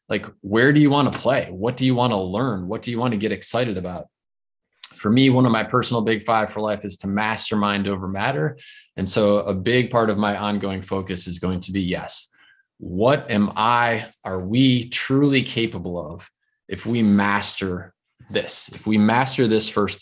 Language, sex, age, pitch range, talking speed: German, male, 20-39, 100-125 Hz, 205 wpm